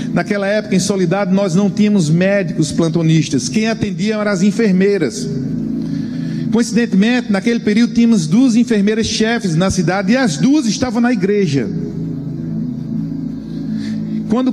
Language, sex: Portuguese, male